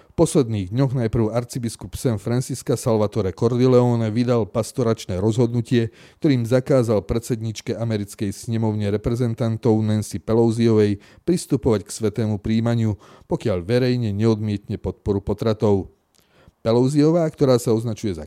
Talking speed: 110 wpm